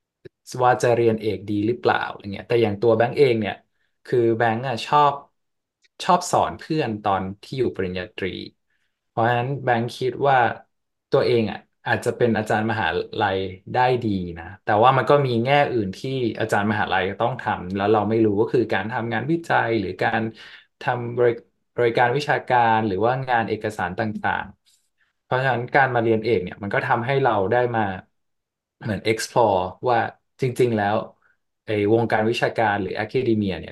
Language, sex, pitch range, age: Thai, male, 105-120 Hz, 20-39